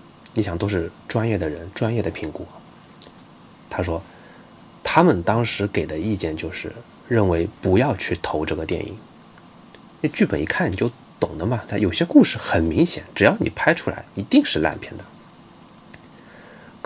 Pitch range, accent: 85-145 Hz, native